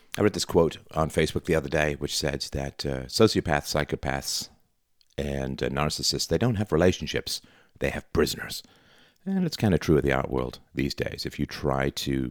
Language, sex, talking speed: English, male, 195 wpm